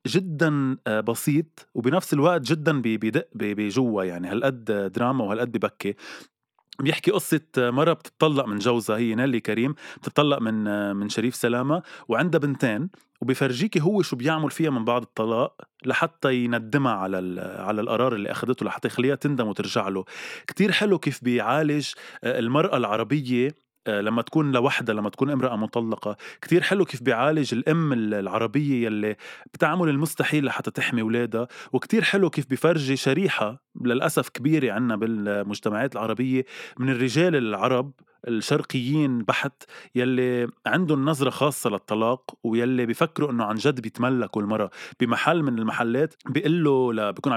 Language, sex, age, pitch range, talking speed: Arabic, male, 20-39, 115-150 Hz, 135 wpm